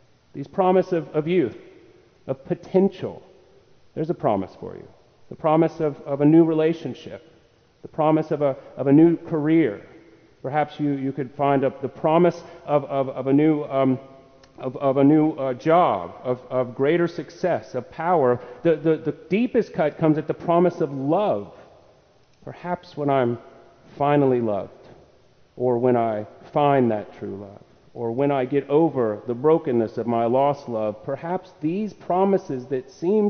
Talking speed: 165 wpm